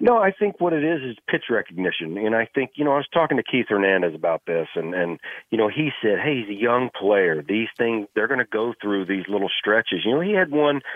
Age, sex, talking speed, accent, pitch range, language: 40-59, male, 265 wpm, American, 100-120 Hz, English